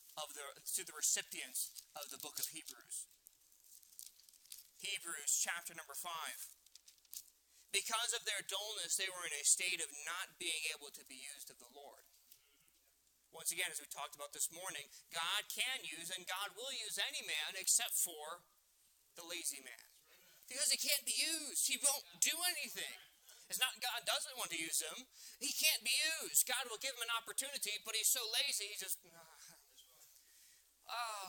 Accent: American